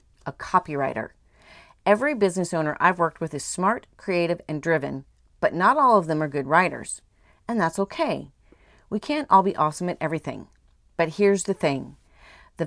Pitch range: 150-195 Hz